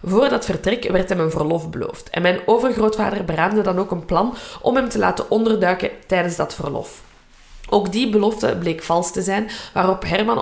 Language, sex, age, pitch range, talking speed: Dutch, female, 20-39, 170-215 Hz, 190 wpm